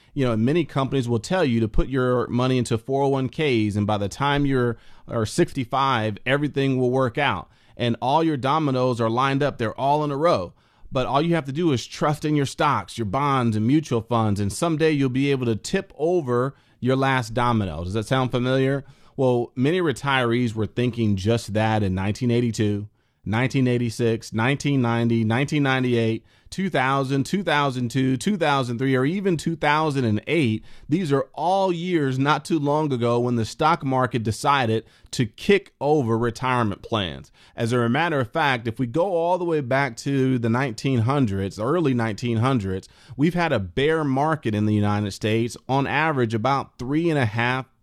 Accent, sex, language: American, male, English